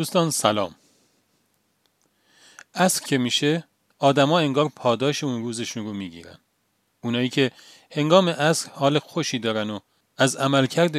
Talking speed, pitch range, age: 120 wpm, 110-145 Hz, 40-59